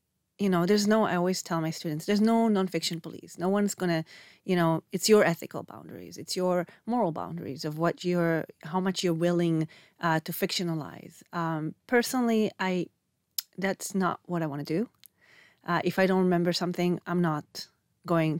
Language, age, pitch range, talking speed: Hebrew, 30-49, 175-210 Hz, 185 wpm